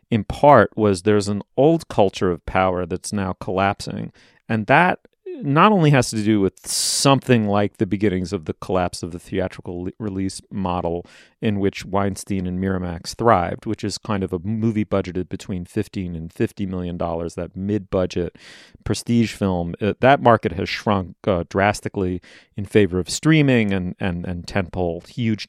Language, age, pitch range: English, 30-49, 95-115 Hz